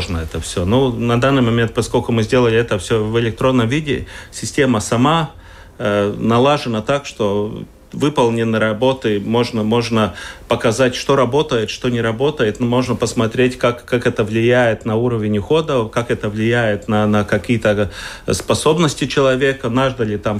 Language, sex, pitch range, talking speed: Russian, male, 110-130 Hz, 145 wpm